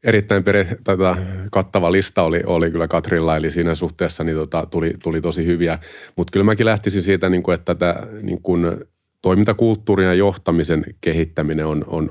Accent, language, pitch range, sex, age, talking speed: native, Finnish, 75-85 Hz, male, 30-49, 155 wpm